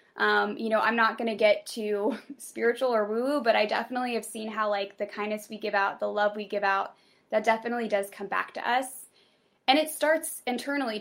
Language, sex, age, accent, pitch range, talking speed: English, female, 10-29, American, 205-235 Hz, 220 wpm